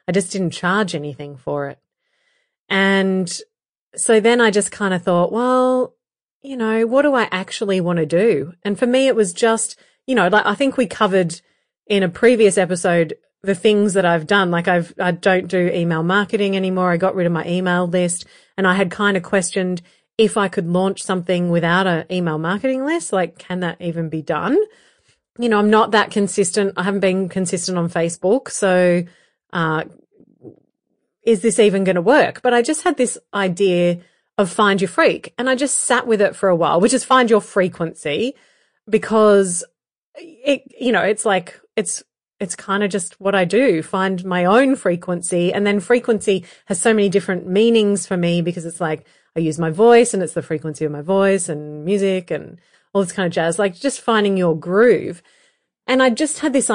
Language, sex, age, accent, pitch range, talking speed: English, female, 30-49, Australian, 180-225 Hz, 200 wpm